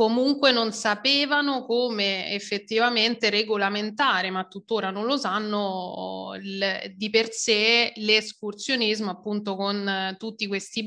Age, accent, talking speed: 20-39, native, 115 wpm